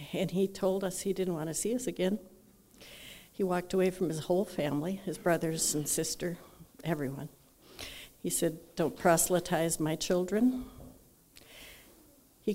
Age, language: 60-79, English